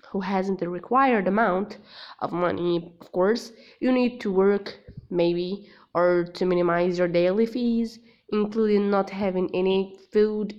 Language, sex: English, female